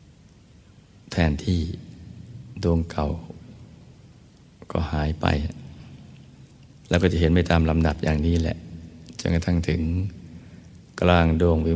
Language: Thai